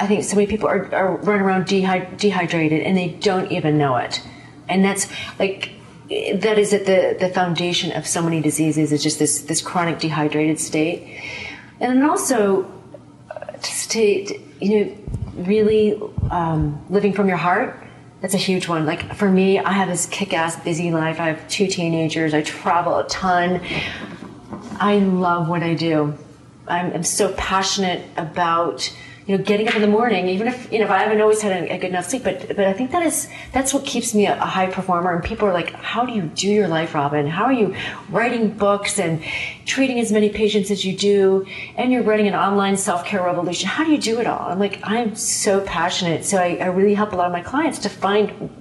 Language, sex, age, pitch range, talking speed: English, female, 40-59, 170-210 Hz, 210 wpm